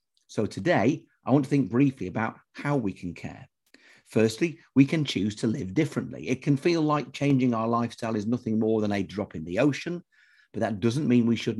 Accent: British